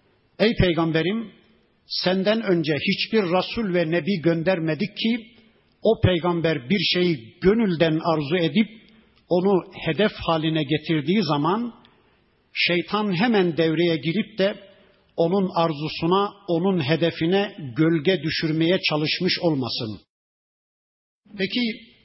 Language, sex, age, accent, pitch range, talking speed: Turkish, male, 50-69, native, 165-200 Hz, 100 wpm